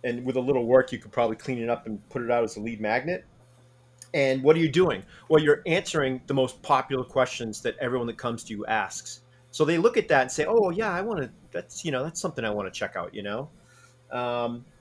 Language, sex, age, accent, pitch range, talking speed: English, male, 30-49, American, 115-140 Hz, 255 wpm